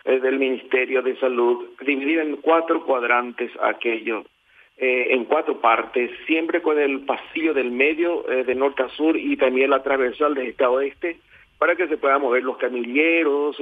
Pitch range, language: 130-165 Hz, Spanish